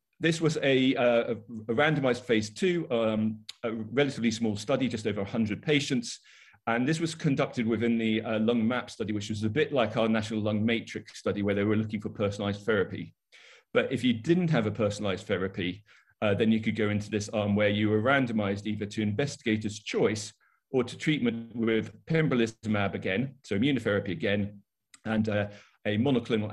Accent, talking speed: British, 185 wpm